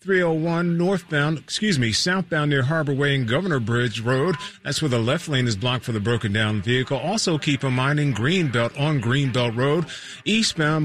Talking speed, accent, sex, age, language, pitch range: 185 wpm, American, male, 40-59, English, 120-145 Hz